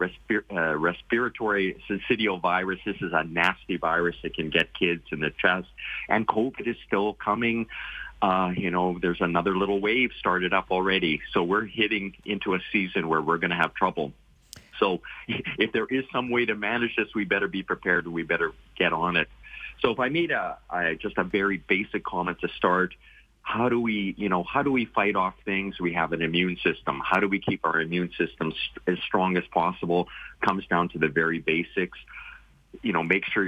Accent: American